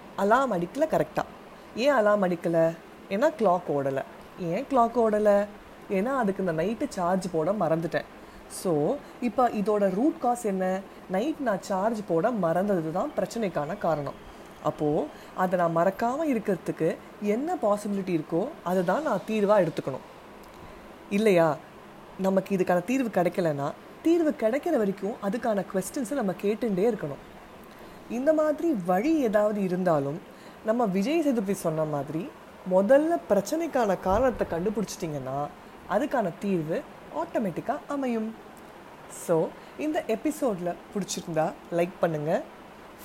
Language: Tamil